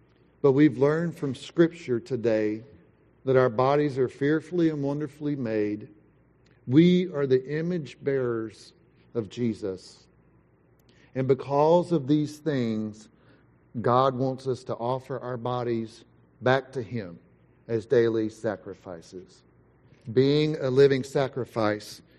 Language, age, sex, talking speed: English, 50-69, male, 115 wpm